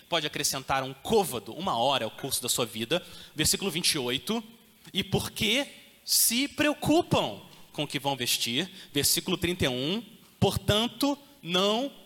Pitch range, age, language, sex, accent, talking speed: 150-235 Hz, 30-49, Portuguese, male, Brazilian, 130 wpm